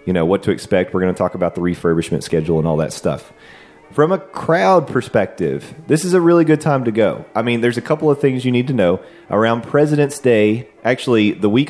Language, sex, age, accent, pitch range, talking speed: English, male, 30-49, American, 90-115 Hz, 235 wpm